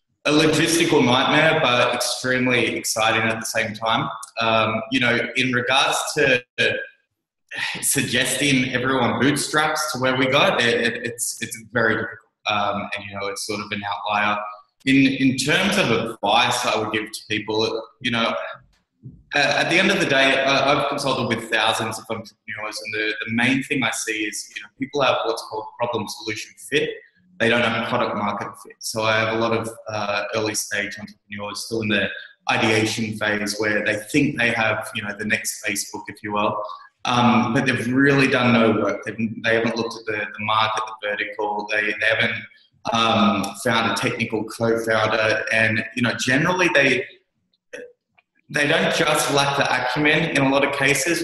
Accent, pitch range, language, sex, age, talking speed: Australian, 110-135 Hz, English, male, 20-39, 185 wpm